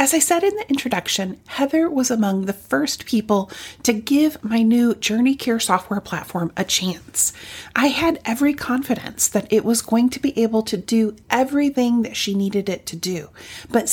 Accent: American